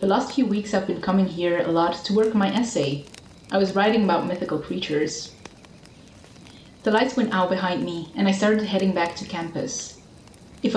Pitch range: 175-230 Hz